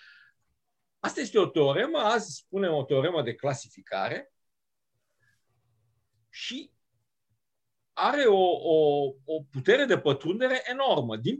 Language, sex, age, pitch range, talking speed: English, male, 50-69, 135-225 Hz, 105 wpm